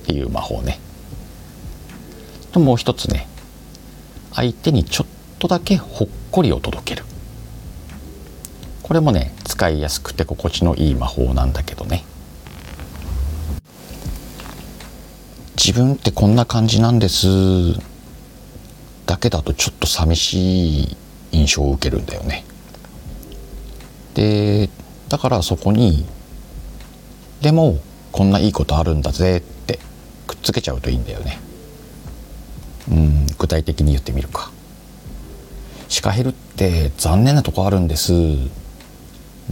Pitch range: 75-100 Hz